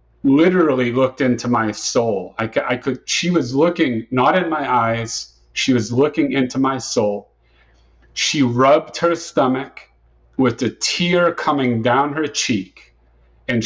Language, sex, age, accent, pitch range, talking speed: English, male, 50-69, American, 105-145 Hz, 145 wpm